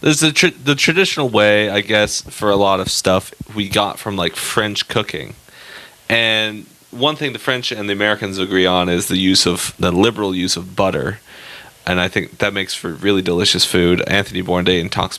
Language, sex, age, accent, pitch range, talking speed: English, male, 30-49, American, 95-115 Hz, 195 wpm